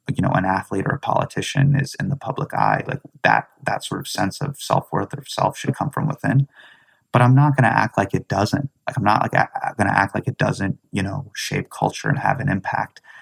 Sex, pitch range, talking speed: male, 105-140 Hz, 240 wpm